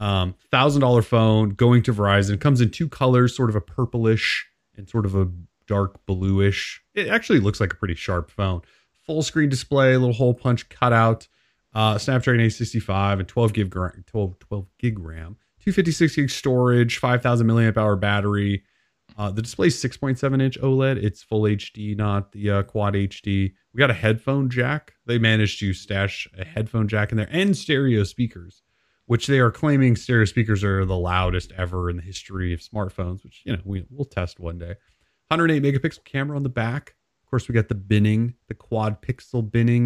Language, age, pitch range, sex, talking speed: English, 30-49, 95-120 Hz, male, 190 wpm